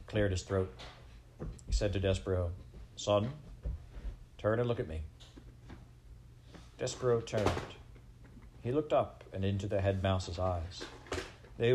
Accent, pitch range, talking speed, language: American, 90-115 Hz, 130 wpm, English